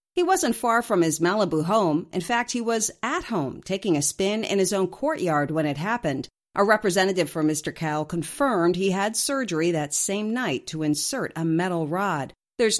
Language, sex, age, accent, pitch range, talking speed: English, female, 50-69, American, 160-220 Hz, 190 wpm